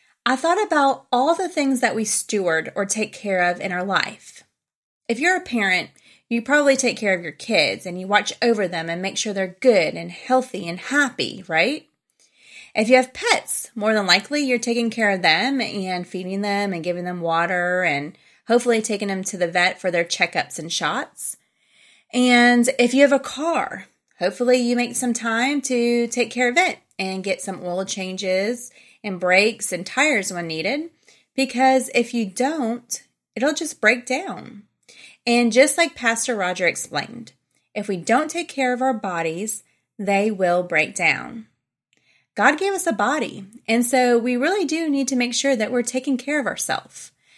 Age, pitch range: 30-49, 195-255 Hz